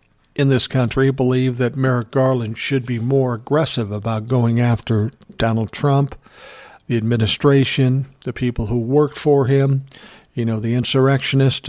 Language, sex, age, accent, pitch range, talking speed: English, male, 60-79, American, 115-135 Hz, 150 wpm